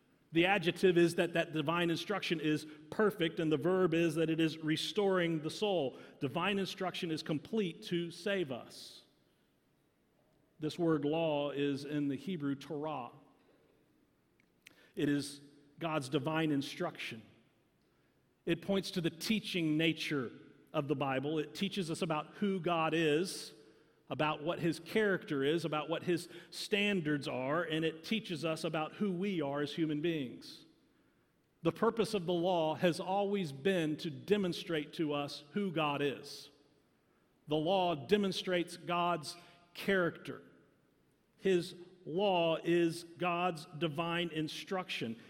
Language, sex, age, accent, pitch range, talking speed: English, male, 40-59, American, 155-185 Hz, 135 wpm